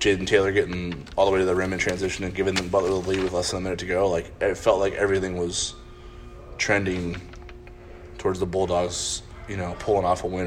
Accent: American